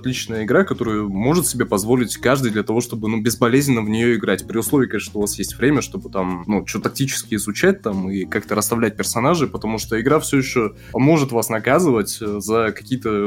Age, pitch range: 20-39, 110-135 Hz